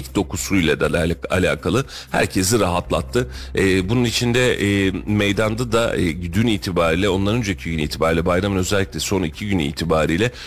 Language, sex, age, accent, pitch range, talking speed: Turkish, male, 40-59, native, 90-110 Hz, 140 wpm